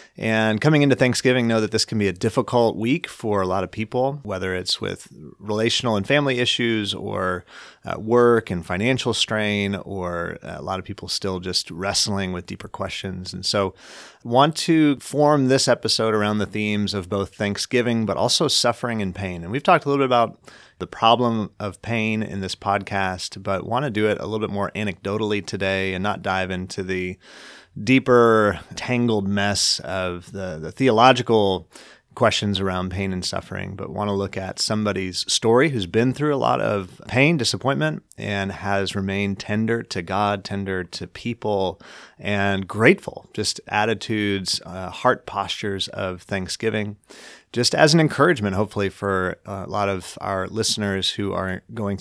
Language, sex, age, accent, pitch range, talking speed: English, male, 30-49, American, 95-115 Hz, 170 wpm